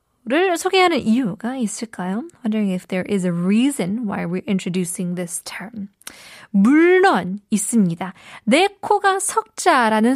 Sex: female